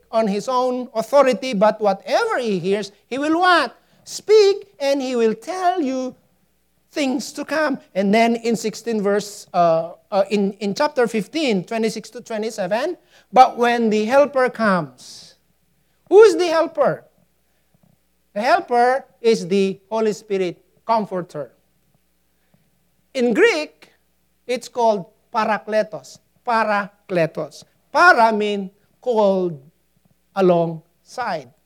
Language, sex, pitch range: English, male, 205-300 Hz